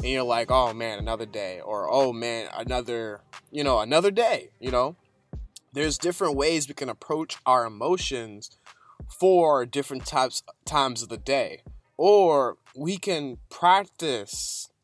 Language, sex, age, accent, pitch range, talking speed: English, male, 20-39, American, 120-150 Hz, 145 wpm